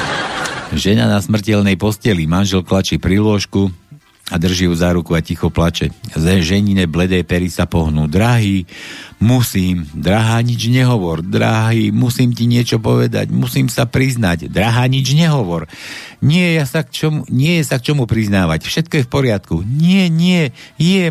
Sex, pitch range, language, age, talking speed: male, 95-130 Hz, Slovak, 60-79, 145 wpm